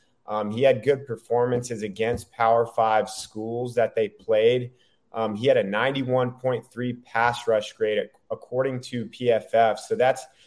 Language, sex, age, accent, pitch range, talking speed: English, male, 30-49, American, 110-130 Hz, 145 wpm